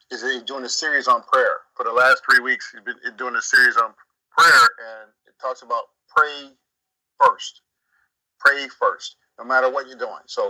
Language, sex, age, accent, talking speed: English, male, 50-69, American, 190 wpm